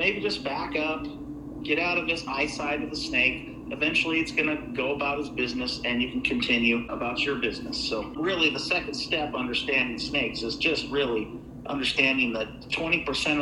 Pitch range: 135-165 Hz